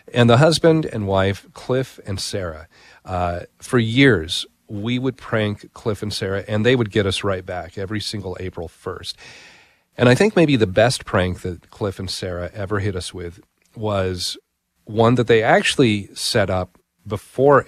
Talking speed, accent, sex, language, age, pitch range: 175 wpm, American, male, English, 40-59, 95-115 Hz